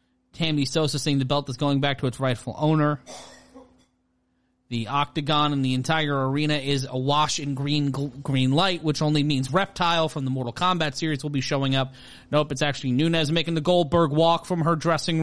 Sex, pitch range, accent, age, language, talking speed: male, 125-165 Hz, American, 30-49, English, 190 wpm